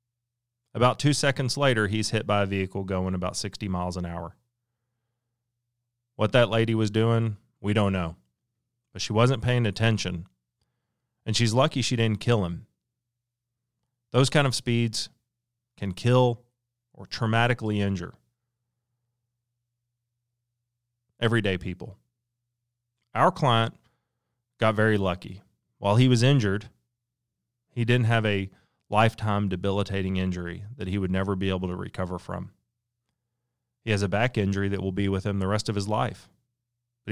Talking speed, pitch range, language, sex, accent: 140 wpm, 100-120 Hz, English, male, American